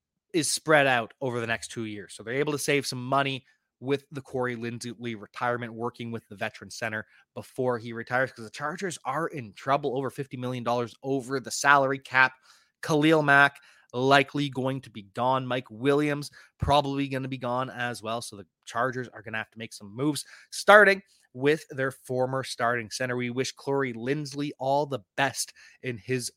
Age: 20-39